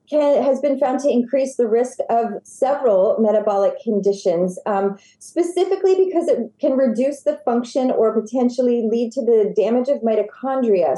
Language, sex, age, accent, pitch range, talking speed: English, female, 30-49, American, 225-280 Hz, 155 wpm